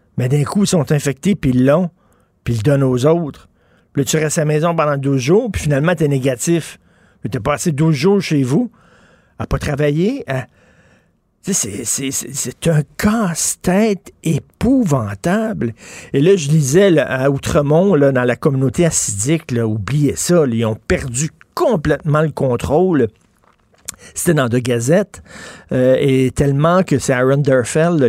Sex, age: male, 50-69